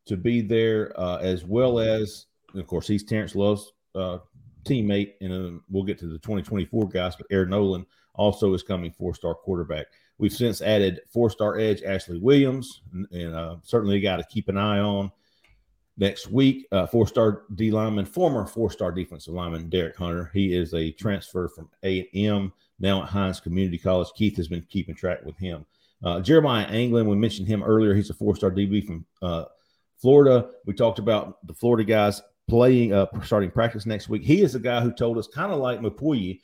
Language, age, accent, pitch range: English, 40-59, American, 95-115 Hz